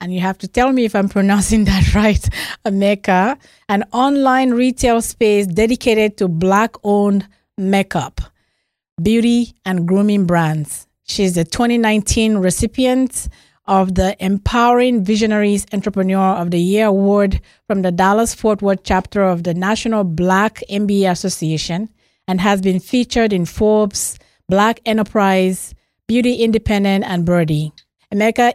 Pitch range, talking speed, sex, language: 190-225 Hz, 130 wpm, female, English